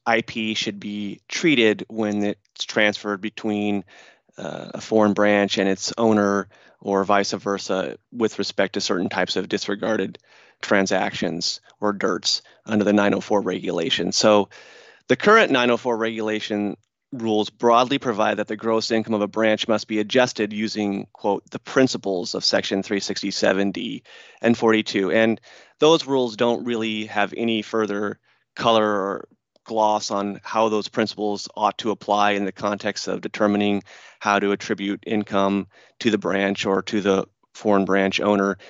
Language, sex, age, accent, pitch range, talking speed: English, male, 30-49, American, 100-110 Hz, 145 wpm